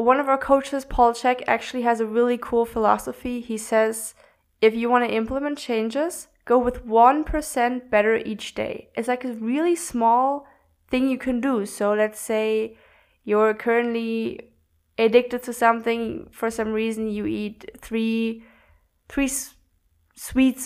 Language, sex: English, female